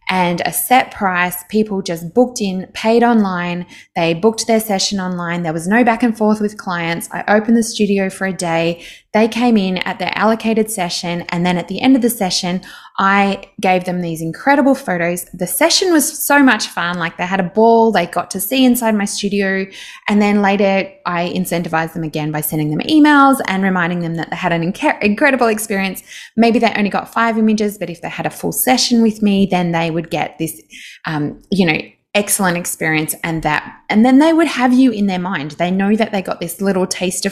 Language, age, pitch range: English, 20-39, 180-225 Hz